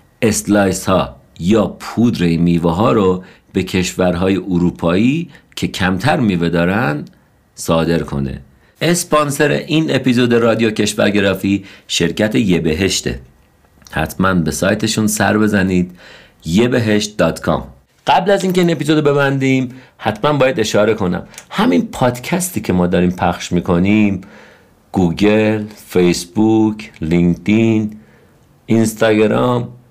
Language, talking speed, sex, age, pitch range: Persian, 105 wpm, male, 50-69, 85-120 Hz